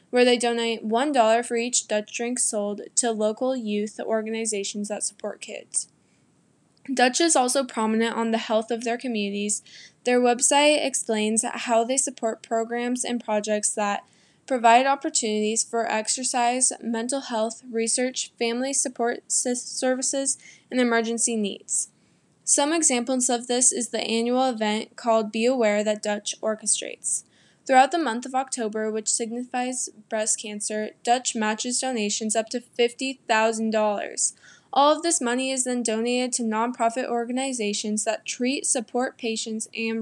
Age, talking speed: 10-29, 140 wpm